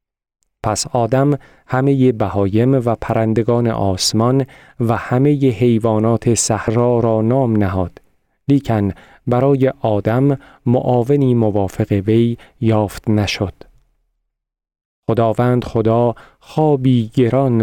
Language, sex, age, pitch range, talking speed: Persian, male, 40-59, 110-130 Hz, 90 wpm